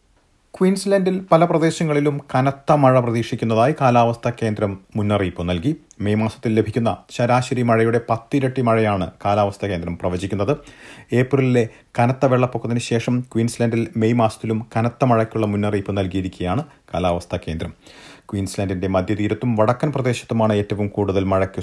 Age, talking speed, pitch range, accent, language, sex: 40-59, 115 wpm, 100-125 Hz, native, Malayalam, male